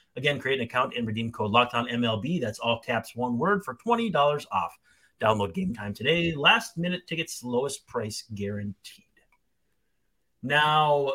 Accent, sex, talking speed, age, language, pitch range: American, male, 140 wpm, 30-49, English, 120-185 Hz